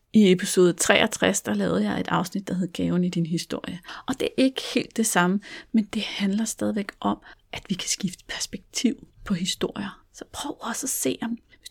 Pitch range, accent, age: 185-240 Hz, native, 30-49